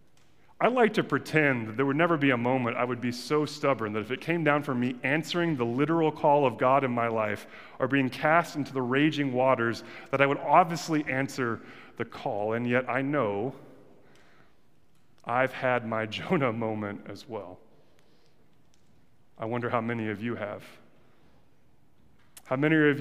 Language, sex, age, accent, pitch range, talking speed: English, male, 30-49, American, 125-180 Hz, 175 wpm